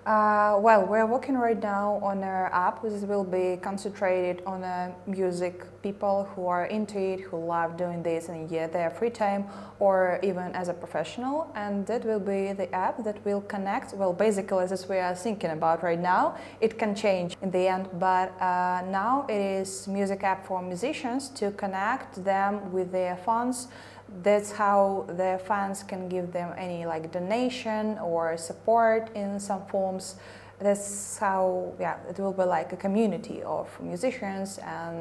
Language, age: English, 20-39